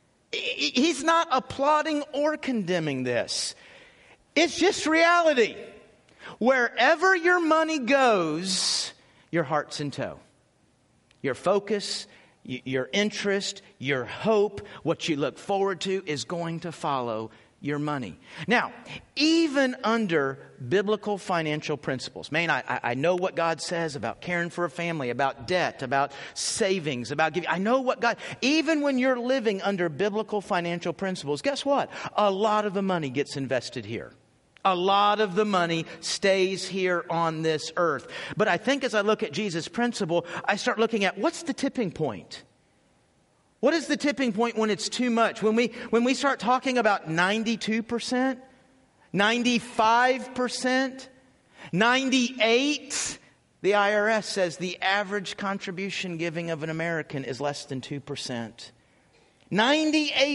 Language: English